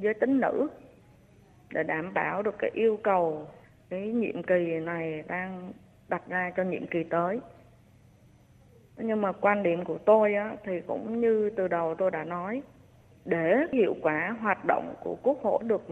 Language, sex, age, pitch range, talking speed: Vietnamese, female, 20-39, 170-235 Hz, 165 wpm